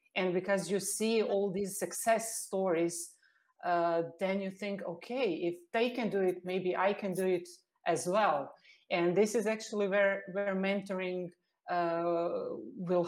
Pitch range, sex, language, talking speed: 175-200 Hz, female, English, 155 wpm